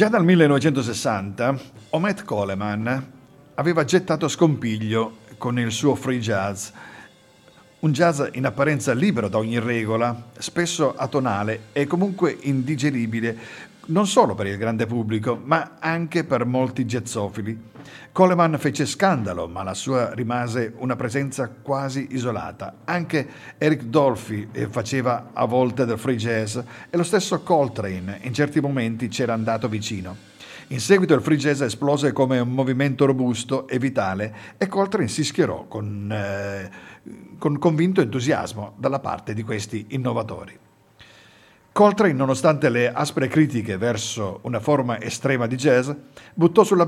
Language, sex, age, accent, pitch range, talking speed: Italian, male, 50-69, native, 115-160 Hz, 135 wpm